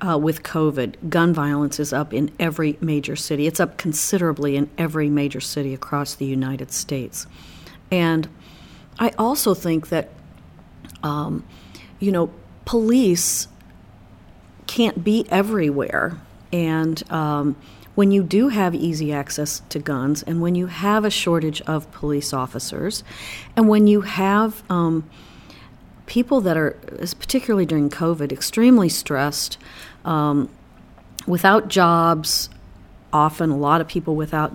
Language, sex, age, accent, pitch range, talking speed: English, female, 50-69, American, 145-180 Hz, 130 wpm